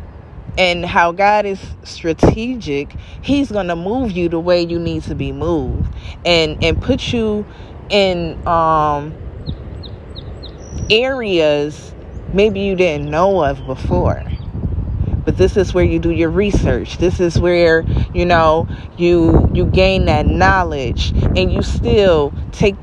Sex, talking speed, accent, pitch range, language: female, 135 wpm, American, 110-185 Hz, English